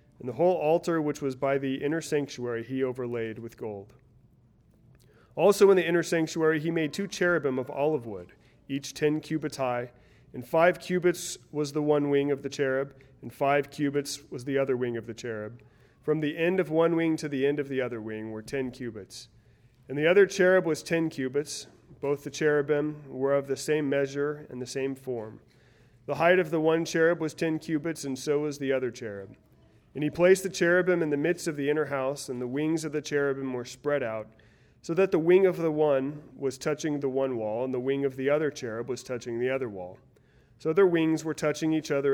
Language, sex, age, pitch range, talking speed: English, male, 30-49, 125-155 Hz, 215 wpm